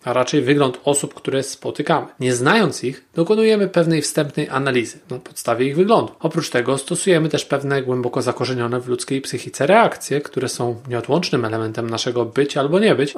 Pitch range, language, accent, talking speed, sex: 125-160 Hz, Polish, native, 170 wpm, male